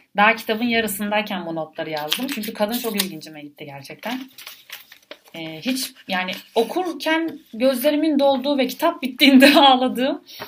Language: Turkish